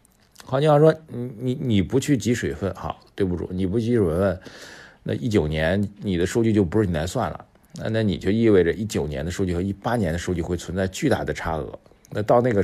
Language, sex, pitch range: Chinese, male, 85-110 Hz